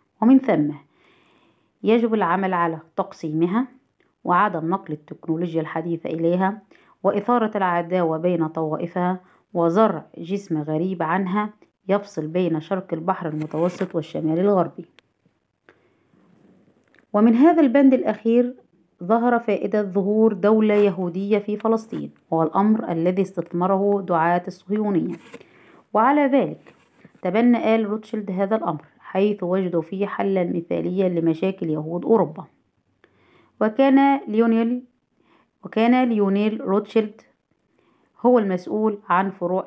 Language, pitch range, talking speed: Arabic, 175-215 Hz, 100 wpm